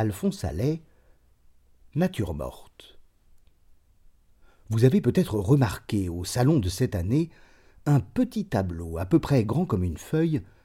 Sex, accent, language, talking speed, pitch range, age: male, French, French, 130 wpm, 95-145 Hz, 40-59